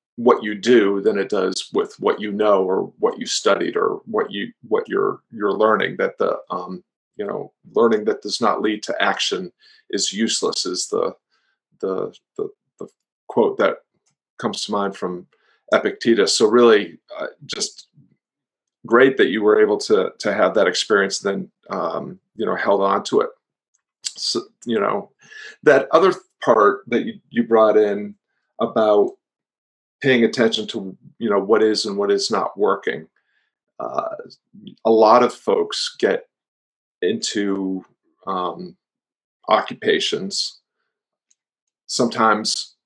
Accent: American